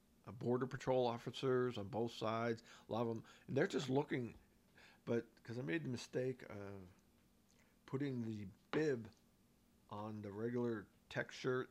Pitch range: 105-125 Hz